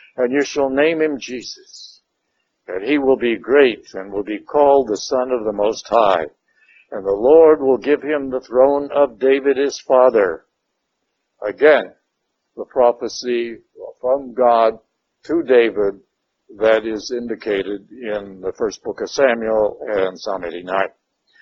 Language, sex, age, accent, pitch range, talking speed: English, male, 60-79, American, 120-155 Hz, 145 wpm